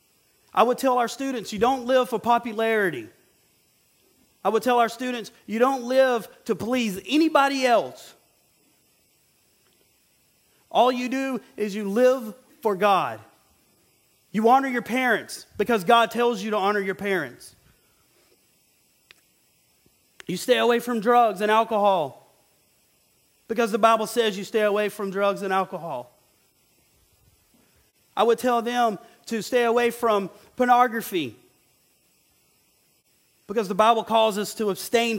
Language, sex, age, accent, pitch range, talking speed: English, male, 30-49, American, 210-250 Hz, 130 wpm